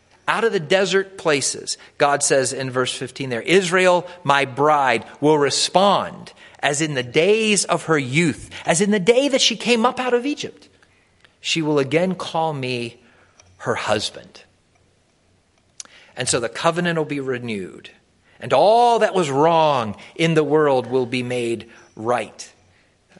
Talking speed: 155 wpm